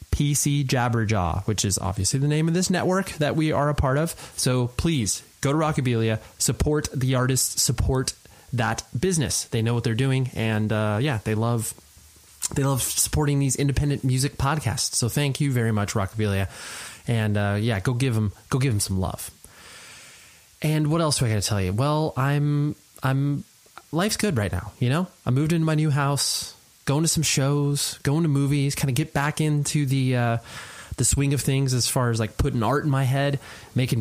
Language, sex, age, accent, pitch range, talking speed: English, male, 20-39, American, 115-150 Hz, 200 wpm